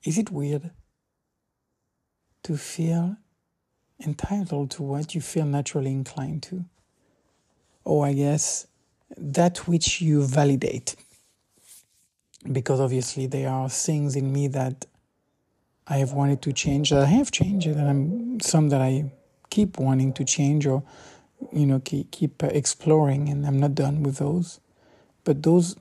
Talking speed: 140 wpm